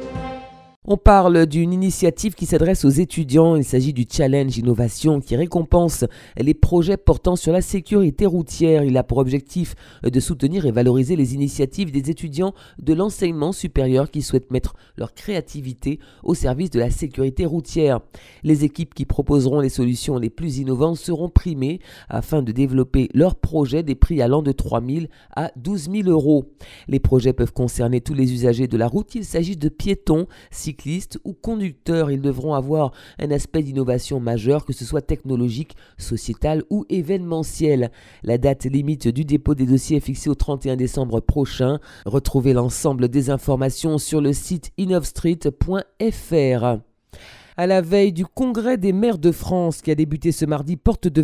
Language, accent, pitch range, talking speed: French, French, 135-175 Hz, 165 wpm